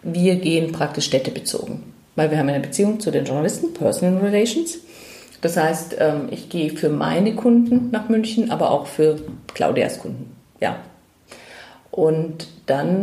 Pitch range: 160-210 Hz